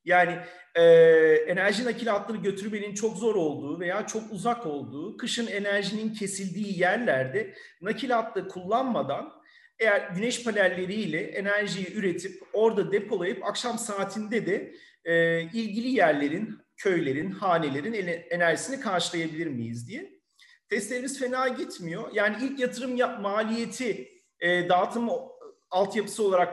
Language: Turkish